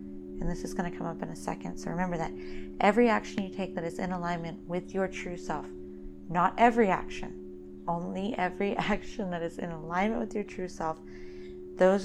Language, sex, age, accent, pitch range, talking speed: English, female, 30-49, American, 165-205 Hz, 200 wpm